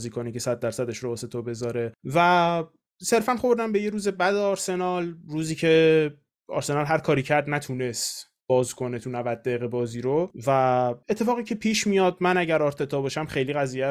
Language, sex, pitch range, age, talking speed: Persian, male, 135-175 Hz, 20-39, 180 wpm